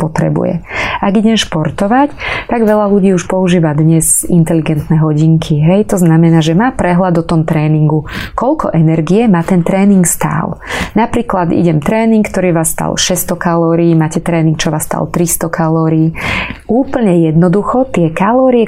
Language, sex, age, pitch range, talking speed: Slovak, female, 20-39, 160-190 Hz, 150 wpm